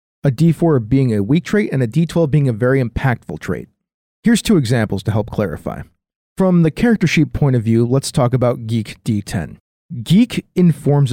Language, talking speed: English, 185 wpm